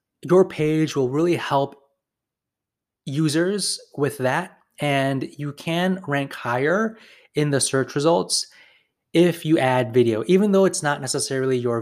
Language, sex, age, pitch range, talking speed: English, male, 20-39, 130-170 Hz, 135 wpm